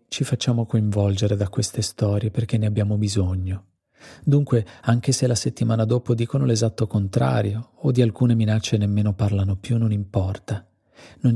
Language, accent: Italian, native